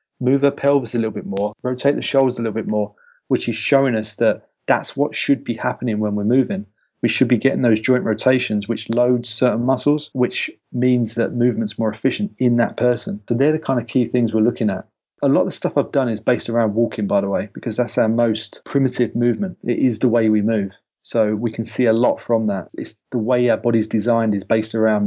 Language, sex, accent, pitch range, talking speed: English, male, British, 110-125 Hz, 240 wpm